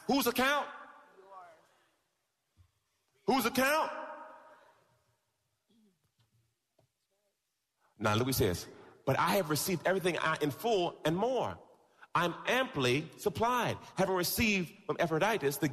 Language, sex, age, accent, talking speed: English, male, 40-59, American, 100 wpm